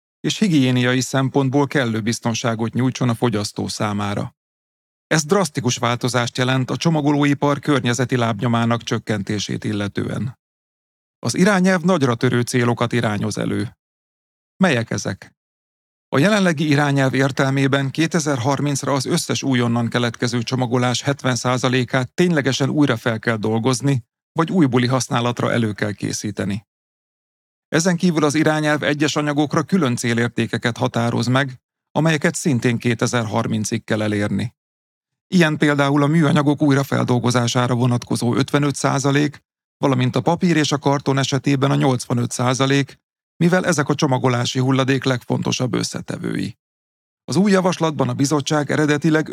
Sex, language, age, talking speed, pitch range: male, Hungarian, 40-59, 115 wpm, 120-145 Hz